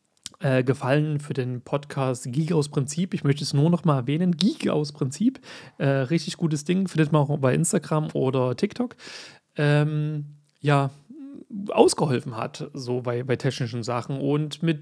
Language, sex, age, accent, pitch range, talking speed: German, male, 30-49, German, 135-180 Hz, 160 wpm